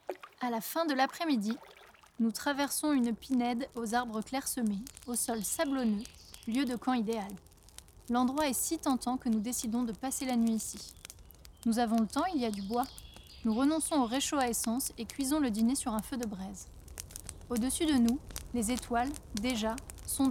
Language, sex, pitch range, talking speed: French, female, 225-285 Hz, 185 wpm